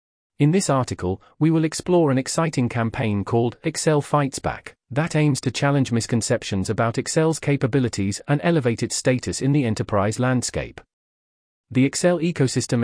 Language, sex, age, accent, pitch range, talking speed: English, male, 40-59, British, 105-145 Hz, 150 wpm